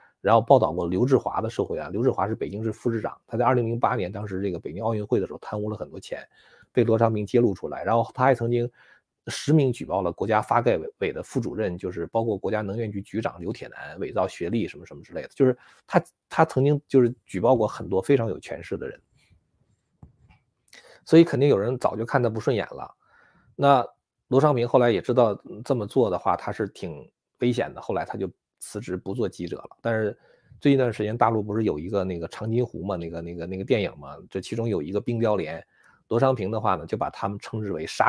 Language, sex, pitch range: Chinese, male, 100-125 Hz